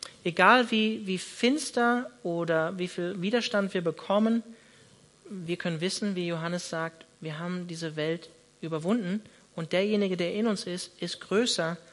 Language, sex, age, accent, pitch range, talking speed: German, male, 40-59, German, 160-190 Hz, 145 wpm